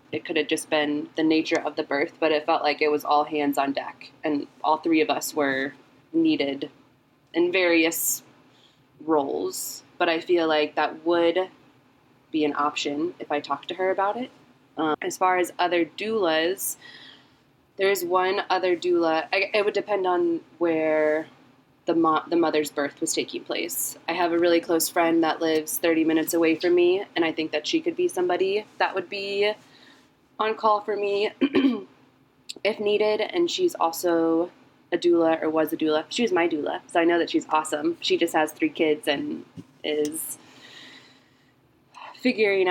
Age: 20-39